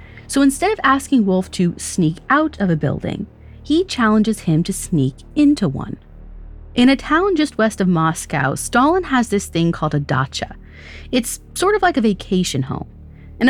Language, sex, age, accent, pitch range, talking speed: English, female, 30-49, American, 160-240 Hz, 180 wpm